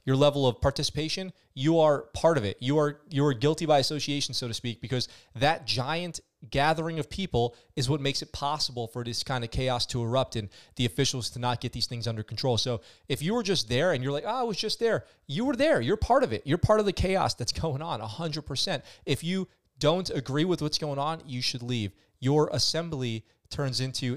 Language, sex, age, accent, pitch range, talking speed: English, male, 30-49, American, 120-160 Hz, 230 wpm